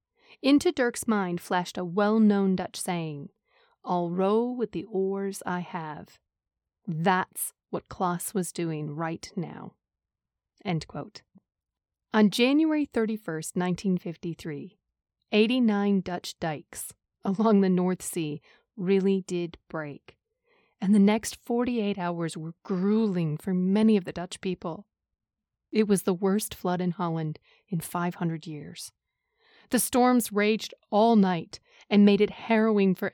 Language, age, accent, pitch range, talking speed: English, 30-49, American, 180-215 Hz, 130 wpm